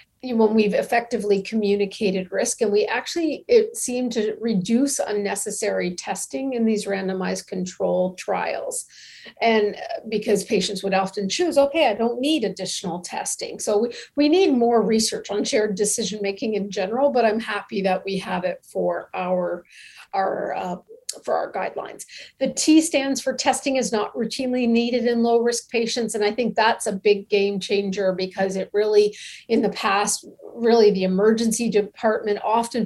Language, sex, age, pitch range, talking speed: English, female, 50-69, 200-245 Hz, 155 wpm